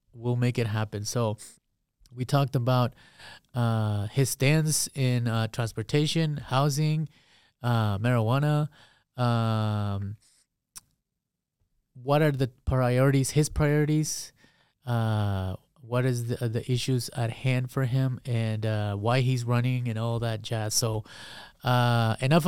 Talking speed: 125 wpm